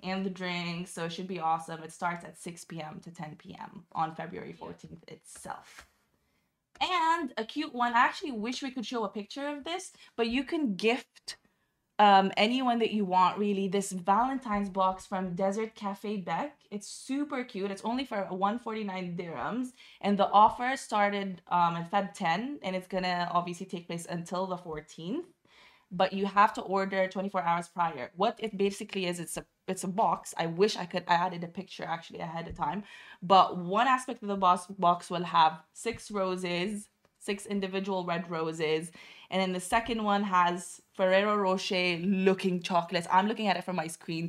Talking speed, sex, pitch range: 185 wpm, female, 175-215 Hz